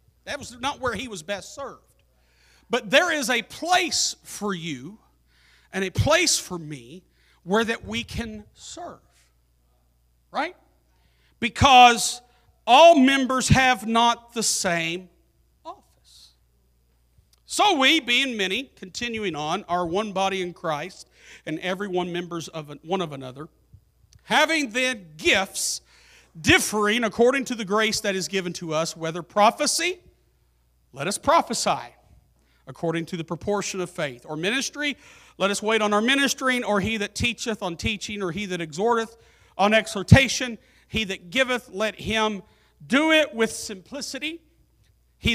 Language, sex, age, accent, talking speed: English, male, 40-59, American, 140 wpm